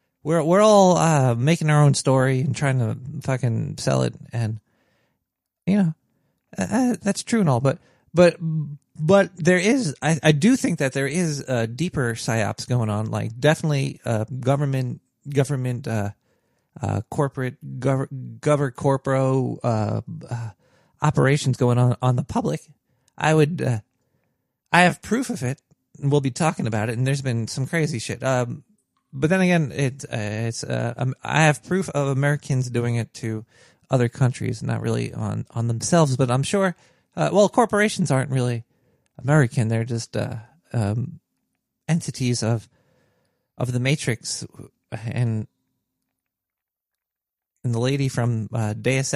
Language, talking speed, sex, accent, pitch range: English, 155 wpm, male, American, 120-150 Hz